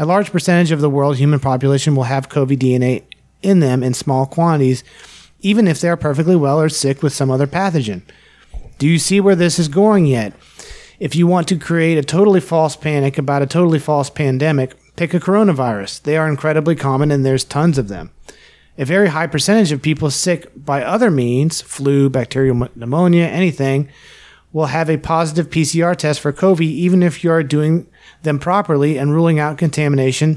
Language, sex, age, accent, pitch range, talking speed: English, male, 30-49, American, 140-175 Hz, 190 wpm